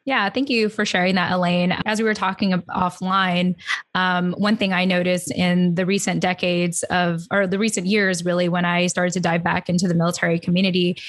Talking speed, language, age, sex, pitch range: 200 wpm, English, 20-39, female, 175-200 Hz